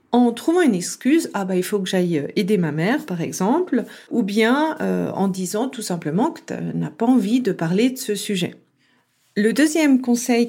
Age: 40-59